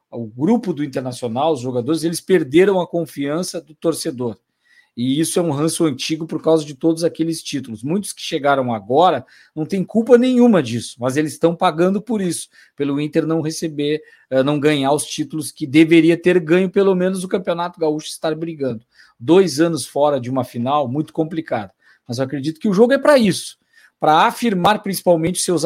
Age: 50-69